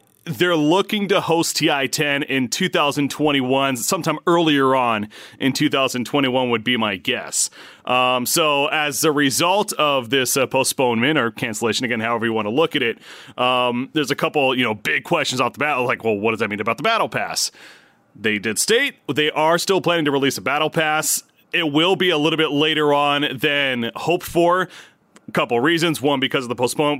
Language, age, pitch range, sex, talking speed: English, 30-49, 125-160 Hz, male, 190 wpm